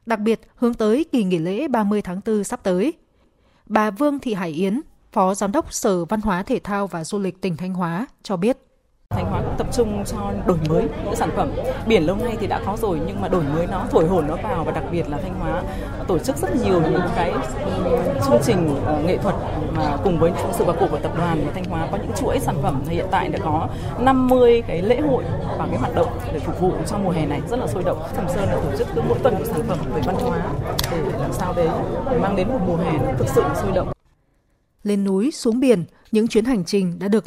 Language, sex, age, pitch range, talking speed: Vietnamese, female, 20-39, 195-245 Hz, 245 wpm